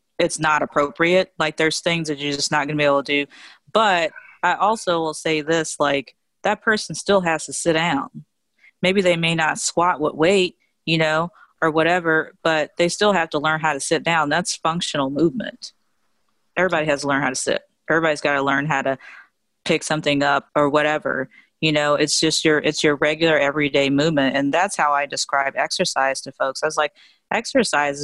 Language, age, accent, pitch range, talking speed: English, 30-49, American, 145-170 Hz, 200 wpm